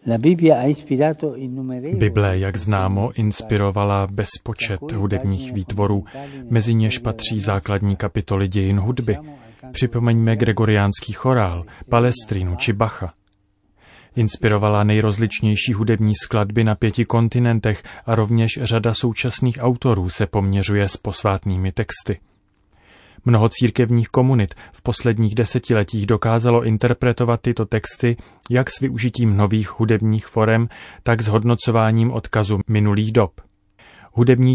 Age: 30-49